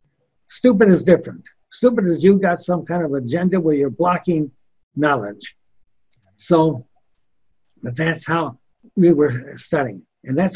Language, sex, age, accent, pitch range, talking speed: English, male, 60-79, American, 140-180 Hz, 135 wpm